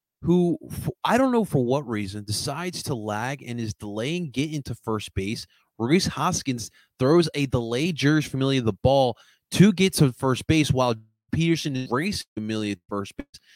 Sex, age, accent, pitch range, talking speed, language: male, 30-49, American, 110-145 Hz, 170 wpm, English